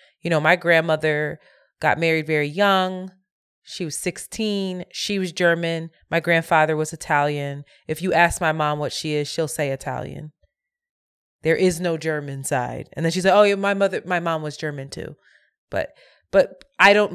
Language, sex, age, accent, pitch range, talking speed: English, female, 20-39, American, 145-175 Hz, 180 wpm